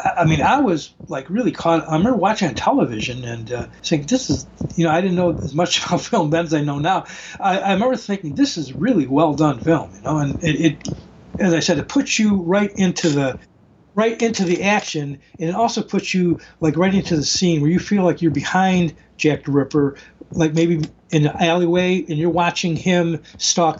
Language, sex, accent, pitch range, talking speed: English, male, American, 150-175 Hz, 220 wpm